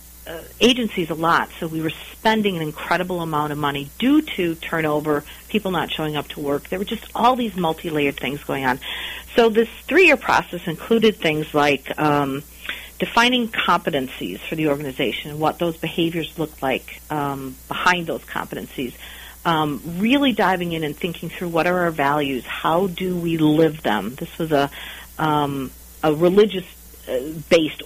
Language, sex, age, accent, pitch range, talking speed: English, female, 50-69, American, 145-180 Hz, 165 wpm